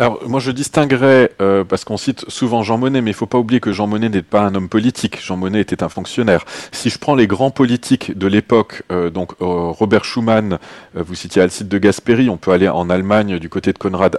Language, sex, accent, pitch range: French, male, French, 95-120 Hz